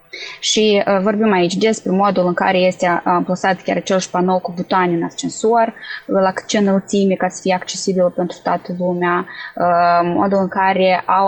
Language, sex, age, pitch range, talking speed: Romanian, female, 20-39, 175-205 Hz, 185 wpm